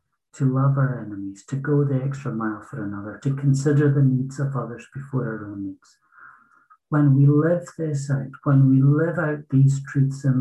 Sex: male